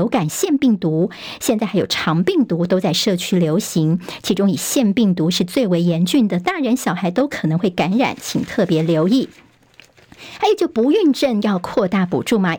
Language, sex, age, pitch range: Chinese, male, 50-69, 185-250 Hz